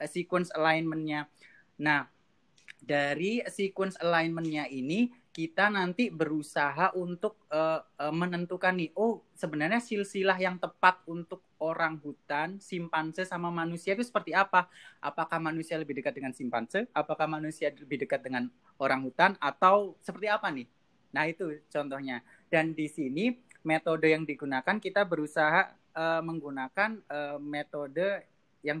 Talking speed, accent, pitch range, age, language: 130 wpm, native, 140-180 Hz, 30-49, Indonesian